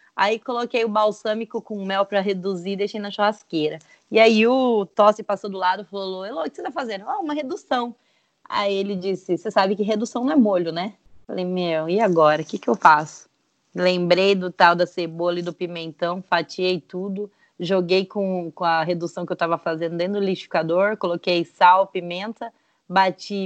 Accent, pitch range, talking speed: Brazilian, 180-225 Hz, 190 wpm